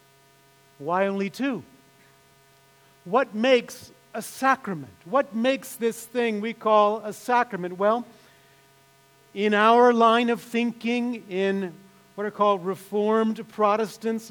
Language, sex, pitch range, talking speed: English, male, 175-230 Hz, 115 wpm